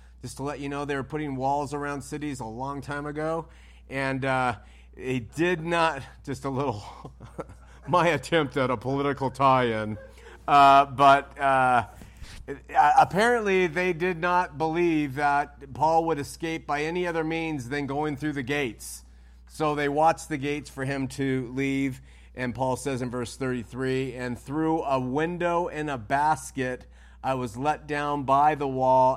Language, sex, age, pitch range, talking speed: English, male, 40-59, 115-145 Hz, 170 wpm